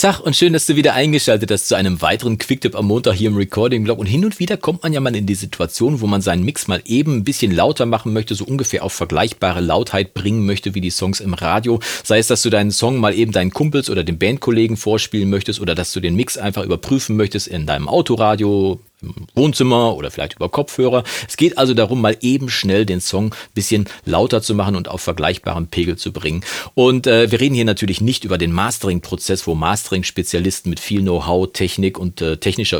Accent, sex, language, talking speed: German, male, German, 225 wpm